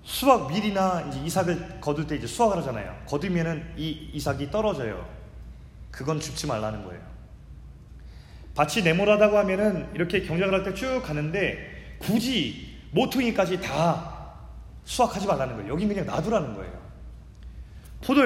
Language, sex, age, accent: Korean, male, 30-49, native